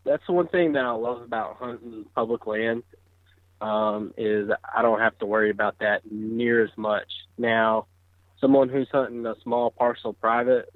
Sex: male